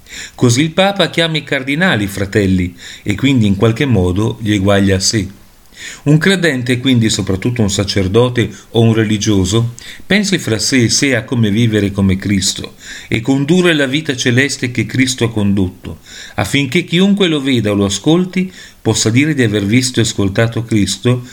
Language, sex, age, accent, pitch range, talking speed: Italian, male, 40-59, native, 105-155 Hz, 165 wpm